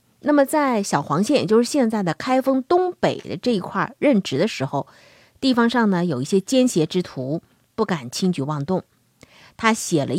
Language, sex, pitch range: Chinese, female, 155-225 Hz